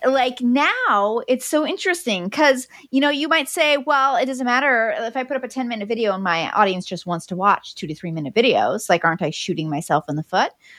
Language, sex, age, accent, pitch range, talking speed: English, female, 30-49, American, 195-280 Hz, 240 wpm